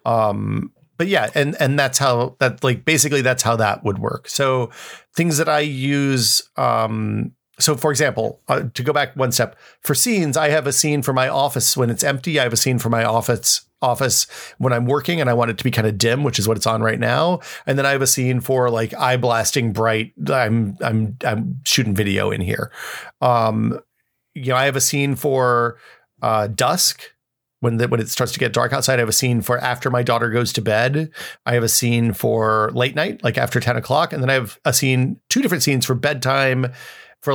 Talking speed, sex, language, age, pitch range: 225 wpm, male, English, 40-59, 115-135 Hz